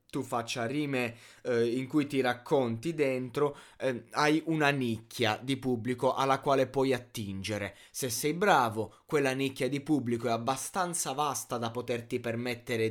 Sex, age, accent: male, 20-39, native